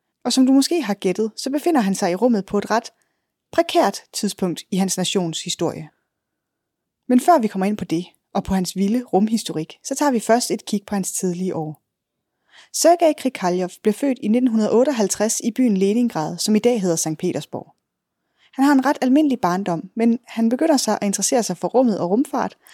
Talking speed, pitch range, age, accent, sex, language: 200 wpm, 185-250 Hz, 20-39, native, female, Danish